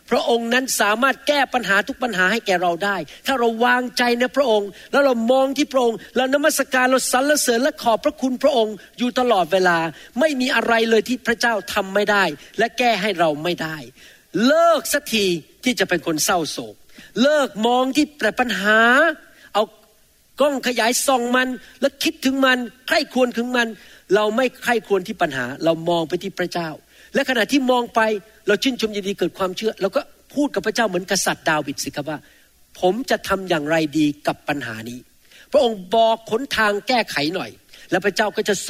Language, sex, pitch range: Thai, male, 195-260 Hz